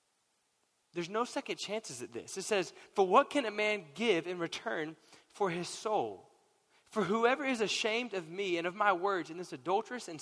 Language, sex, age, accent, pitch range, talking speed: English, male, 20-39, American, 180-240 Hz, 195 wpm